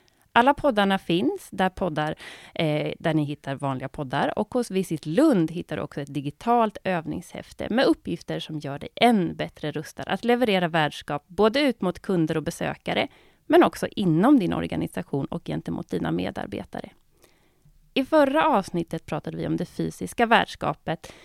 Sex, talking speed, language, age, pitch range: female, 160 wpm, Swedish, 30-49, 155-215 Hz